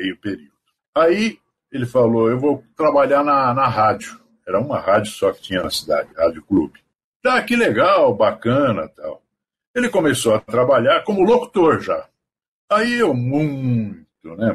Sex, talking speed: male, 155 wpm